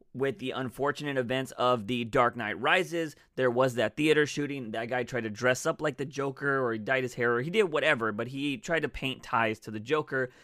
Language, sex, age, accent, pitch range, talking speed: English, male, 30-49, American, 130-180 Hz, 235 wpm